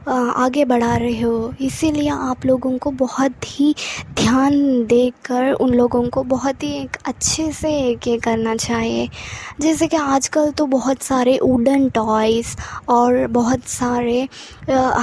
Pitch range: 235-265 Hz